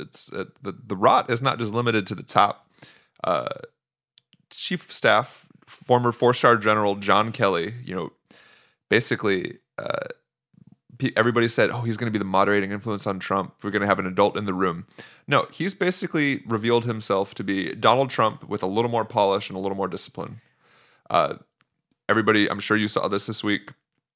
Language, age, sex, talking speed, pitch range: English, 20-39, male, 185 wpm, 100-120 Hz